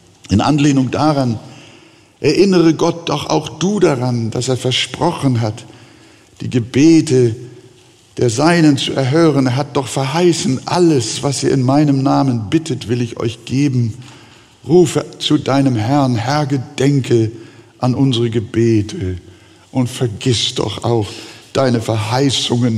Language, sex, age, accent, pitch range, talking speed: German, male, 60-79, German, 105-130 Hz, 130 wpm